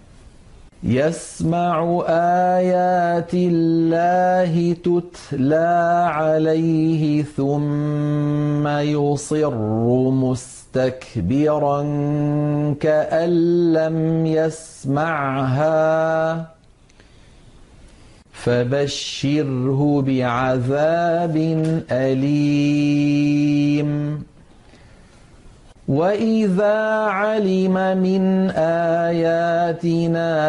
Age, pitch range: 50-69, 145-170 Hz